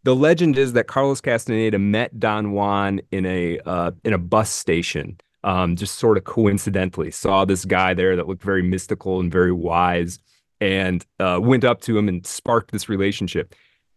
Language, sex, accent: English, male, American